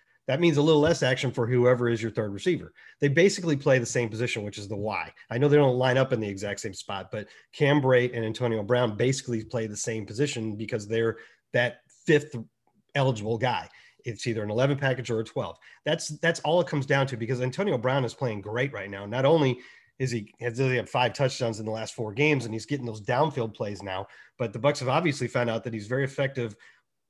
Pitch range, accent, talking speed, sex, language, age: 115-145 Hz, American, 235 wpm, male, English, 30-49